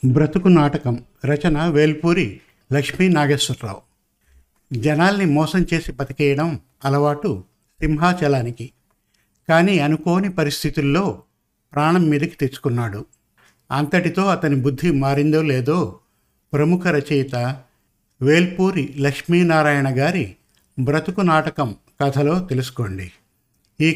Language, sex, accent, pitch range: Telugu, male, native, 140-165 Hz